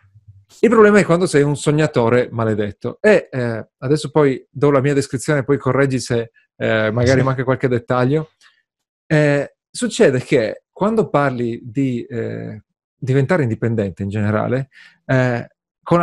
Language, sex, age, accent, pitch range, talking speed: Italian, male, 30-49, native, 120-170 Hz, 140 wpm